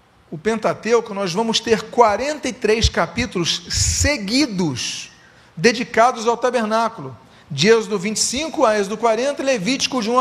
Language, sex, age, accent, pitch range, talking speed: Portuguese, male, 40-59, Brazilian, 185-240 Hz, 125 wpm